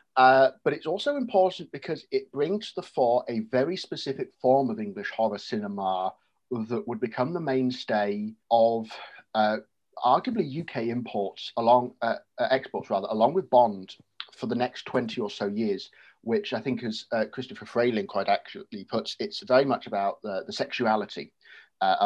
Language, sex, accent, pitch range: English, male, British, 110-140 Hz